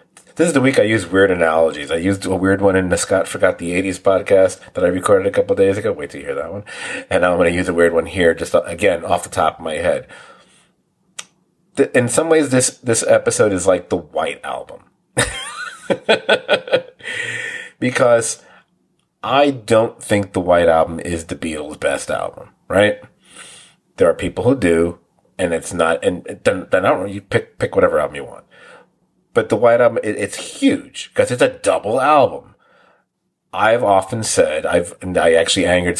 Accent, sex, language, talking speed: American, male, English, 190 wpm